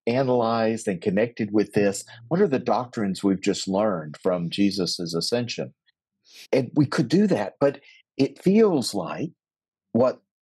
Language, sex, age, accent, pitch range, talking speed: English, male, 50-69, American, 100-145 Hz, 145 wpm